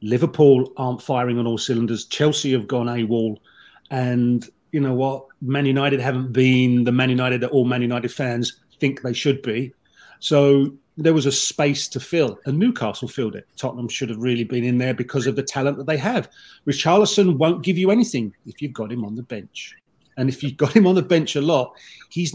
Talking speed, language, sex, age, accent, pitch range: 210 wpm, English, male, 40-59, British, 125-150 Hz